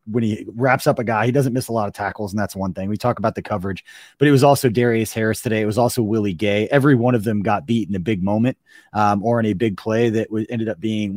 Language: English